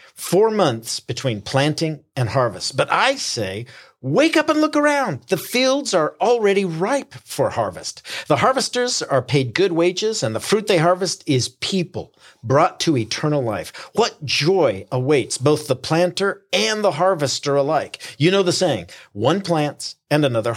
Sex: male